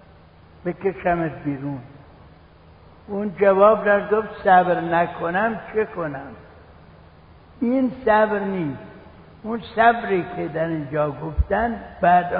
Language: Persian